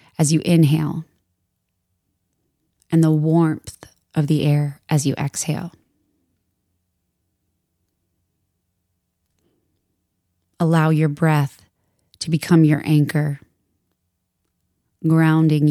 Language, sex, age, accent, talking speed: English, female, 20-39, American, 75 wpm